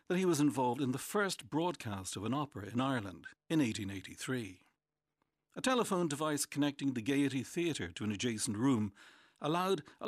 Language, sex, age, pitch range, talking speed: English, male, 60-79, 105-155 Hz, 165 wpm